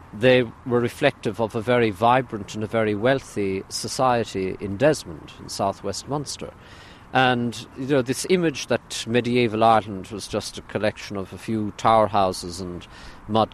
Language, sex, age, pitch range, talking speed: English, male, 50-69, 100-125 Hz, 160 wpm